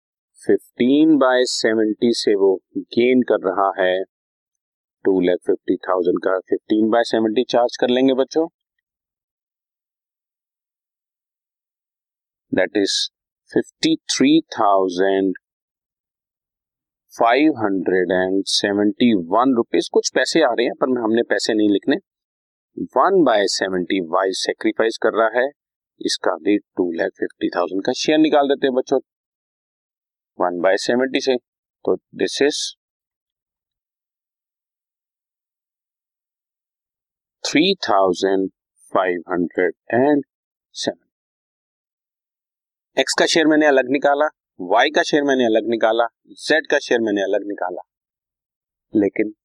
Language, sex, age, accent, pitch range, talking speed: Hindi, male, 40-59, native, 95-140 Hz, 100 wpm